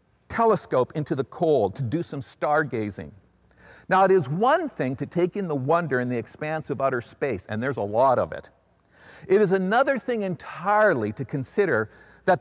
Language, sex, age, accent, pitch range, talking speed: English, male, 50-69, American, 140-205 Hz, 185 wpm